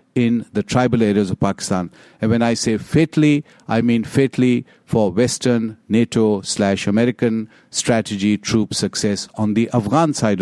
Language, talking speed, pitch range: English, 140 wpm, 110-135 Hz